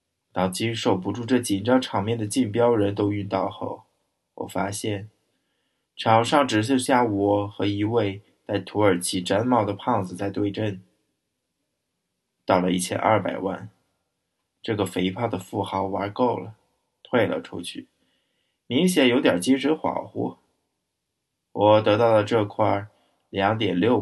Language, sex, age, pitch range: Chinese, male, 20-39, 95-110 Hz